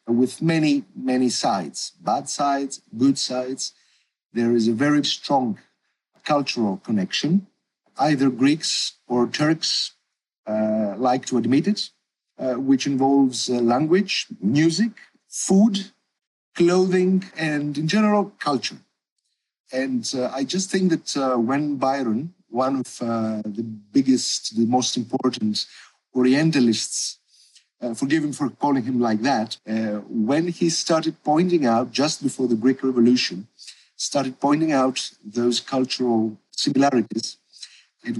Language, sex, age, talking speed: English, male, 50-69, 125 wpm